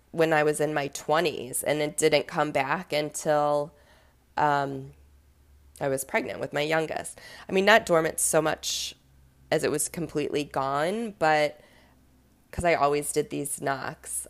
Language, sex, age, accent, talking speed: English, female, 20-39, American, 155 wpm